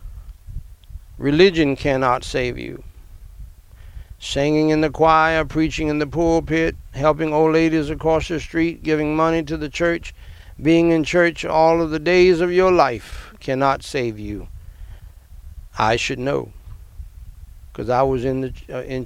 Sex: male